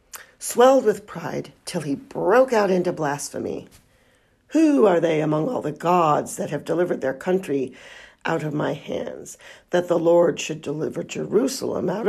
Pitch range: 145-180 Hz